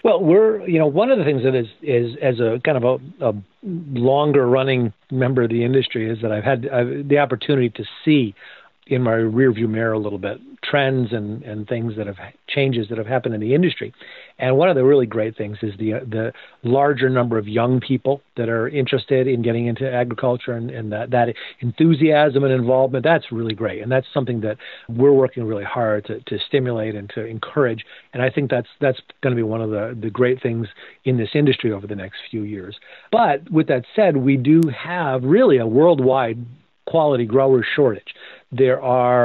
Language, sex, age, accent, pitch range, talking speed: English, male, 50-69, American, 115-135 Hz, 210 wpm